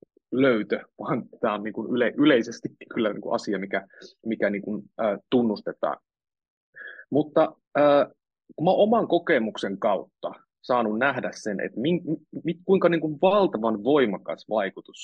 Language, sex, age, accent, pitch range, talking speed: Finnish, male, 30-49, native, 105-175 Hz, 85 wpm